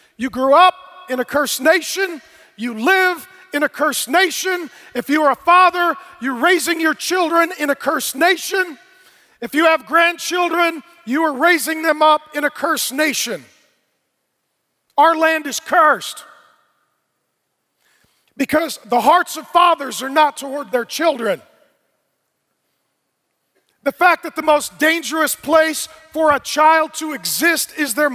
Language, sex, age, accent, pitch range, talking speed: English, male, 40-59, American, 280-335 Hz, 145 wpm